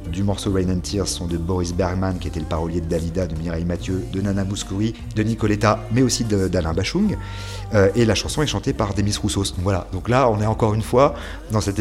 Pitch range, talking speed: 90-115 Hz, 240 wpm